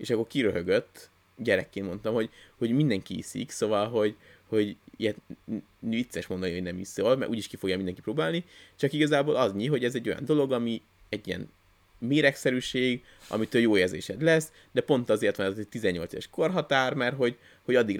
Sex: male